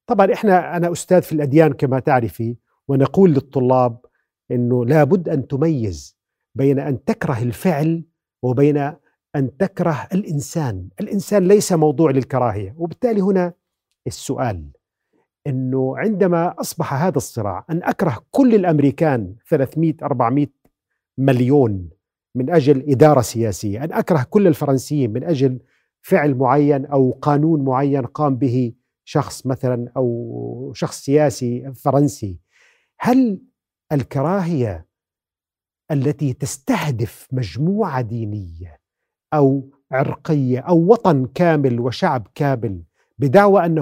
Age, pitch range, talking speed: 40-59, 125-170 Hz, 110 wpm